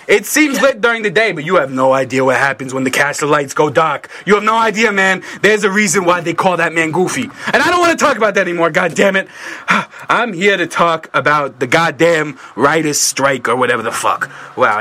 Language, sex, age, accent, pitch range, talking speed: English, male, 20-39, American, 165-260 Hz, 230 wpm